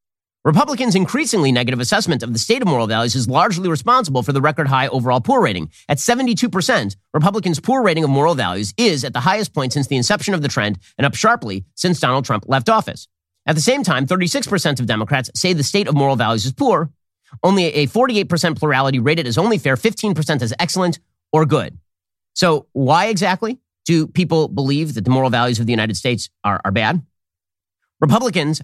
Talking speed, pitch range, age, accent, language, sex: 195 wpm, 120-170 Hz, 30-49, American, English, male